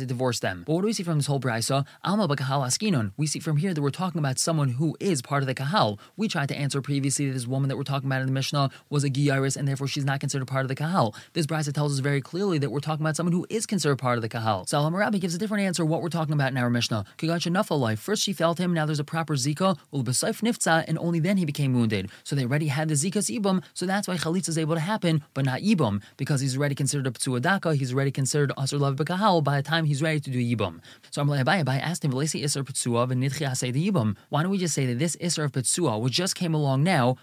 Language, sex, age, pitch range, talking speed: English, male, 20-39, 135-170 Hz, 260 wpm